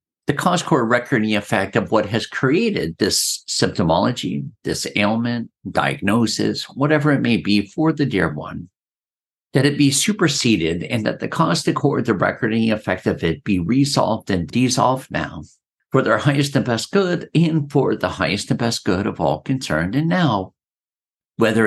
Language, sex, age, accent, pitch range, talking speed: English, male, 50-69, American, 110-150 Hz, 170 wpm